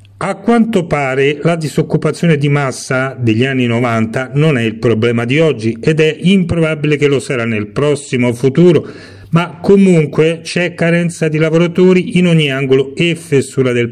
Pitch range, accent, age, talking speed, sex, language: 120-165 Hz, native, 40-59, 160 wpm, male, Italian